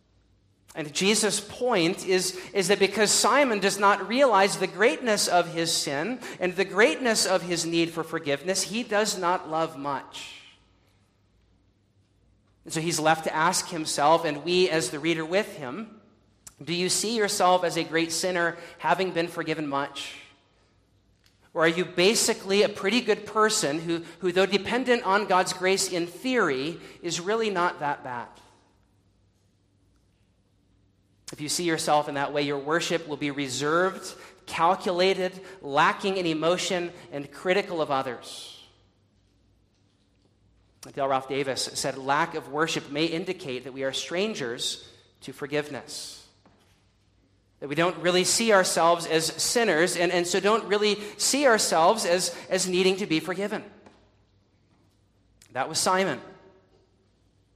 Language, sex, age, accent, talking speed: English, male, 40-59, American, 140 wpm